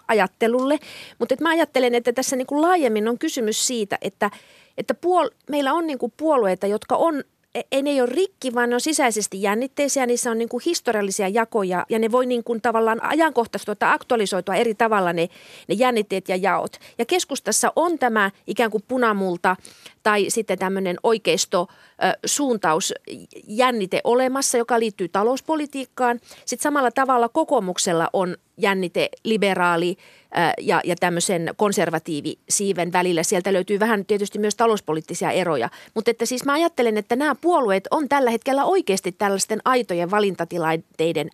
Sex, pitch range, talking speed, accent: female, 205-270 Hz, 150 wpm, native